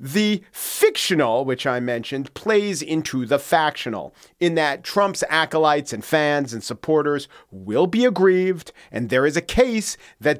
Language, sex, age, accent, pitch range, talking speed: English, male, 40-59, American, 125-165 Hz, 150 wpm